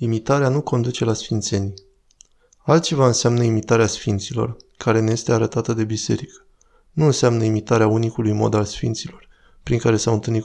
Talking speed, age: 155 wpm, 20-39